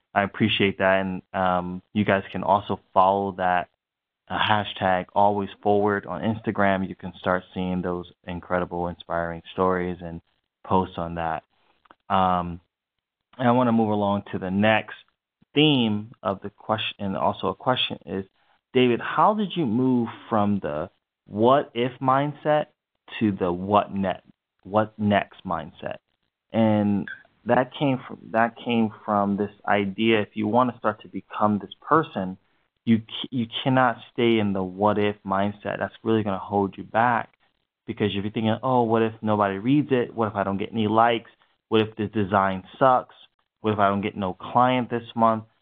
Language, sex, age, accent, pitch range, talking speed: English, male, 20-39, American, 95-115 Hz, 170 wpm